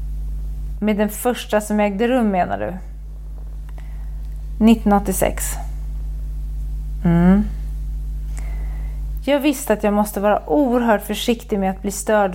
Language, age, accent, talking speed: Swedish, 30-49, native, 105 wpm